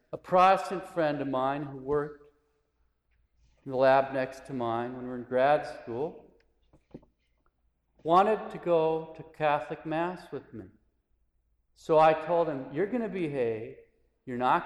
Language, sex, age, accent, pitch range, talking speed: English, male, 50-69, American, 125-190 Hz, 150 wpm